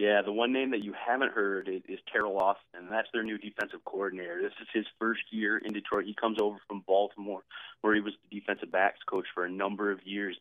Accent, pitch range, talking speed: American, 105-120 Hz, 230 wpm